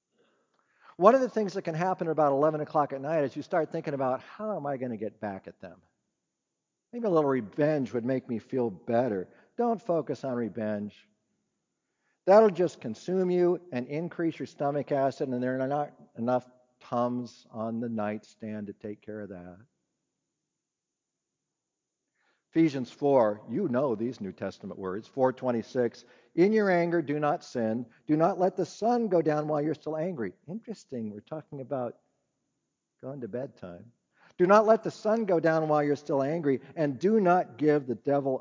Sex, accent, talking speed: male, American, 175 wpm